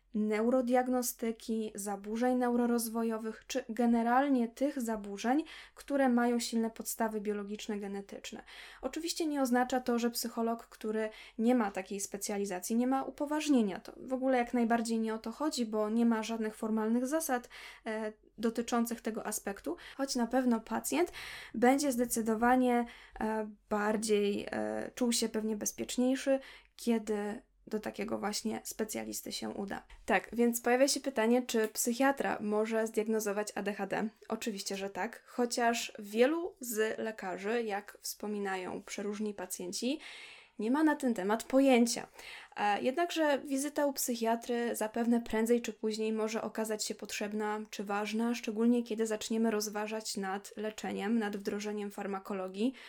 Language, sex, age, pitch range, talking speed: Polish, female, 10-29, 210-245 Hz, 130 wpm